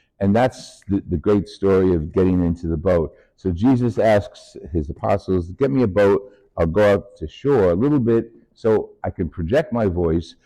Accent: American